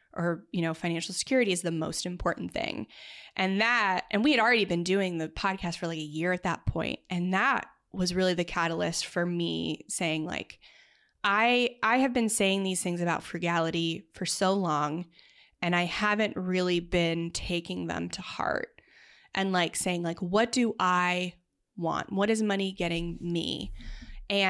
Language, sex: English, female